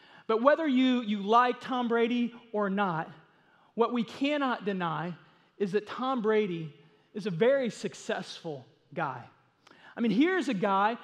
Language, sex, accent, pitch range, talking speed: English, male, American, 200-255 Hz, 145 wpm